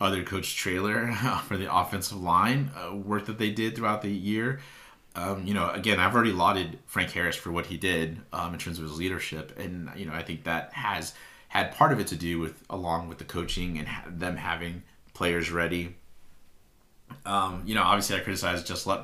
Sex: male